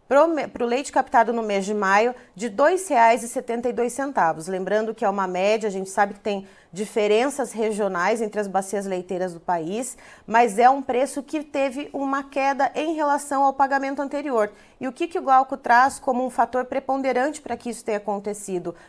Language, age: Portuguese, 30-49